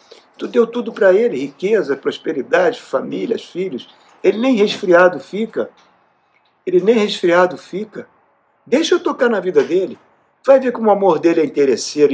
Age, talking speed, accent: 50-69, 150 wpm, Brazilian